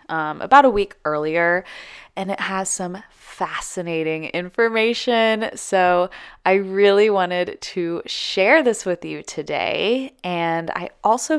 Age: 20-39